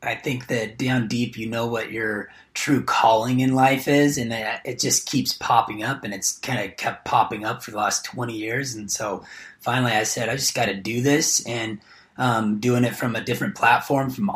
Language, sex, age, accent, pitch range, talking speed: English, male, 30-49, American, 115-140 Hz, 220 wpm